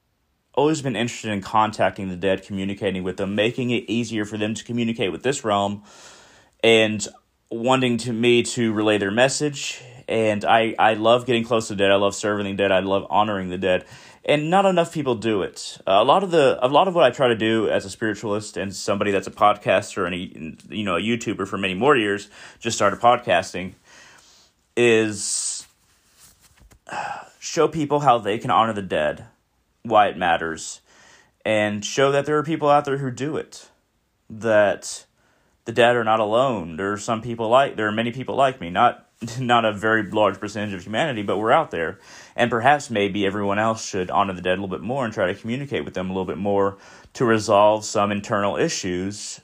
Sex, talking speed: male, 205 wpm